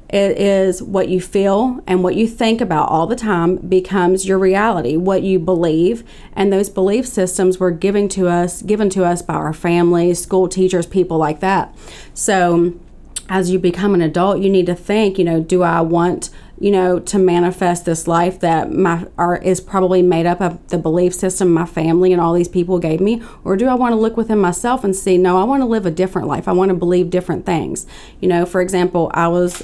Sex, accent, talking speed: female, American, 220 wpm